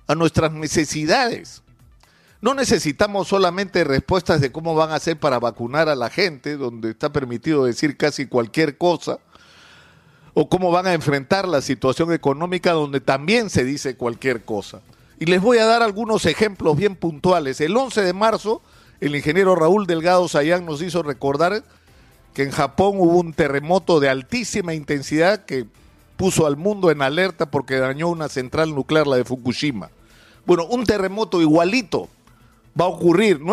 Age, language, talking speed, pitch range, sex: 50-69, Spanish, 160 wpm, 140-190 Hz, male